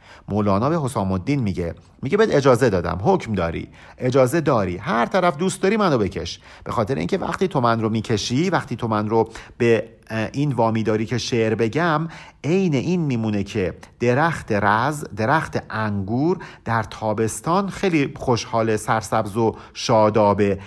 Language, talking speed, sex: Persian, 150 wpm, male